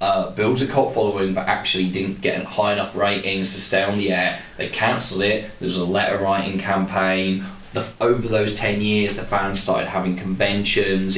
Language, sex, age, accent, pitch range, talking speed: English, male, 20-39, British, 95-125 Hz, 190 wpm